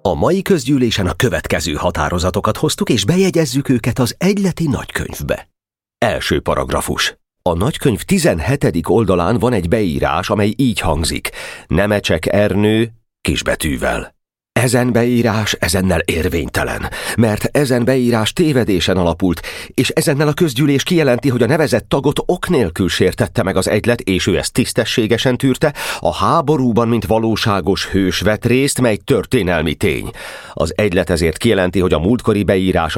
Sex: male